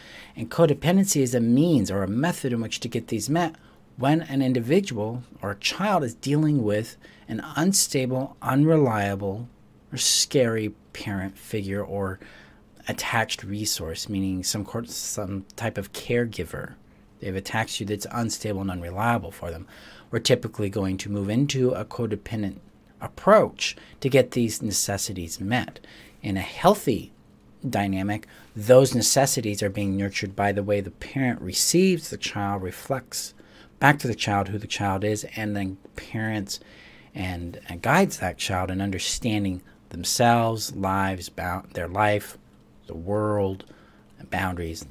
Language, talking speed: English, 145 wpm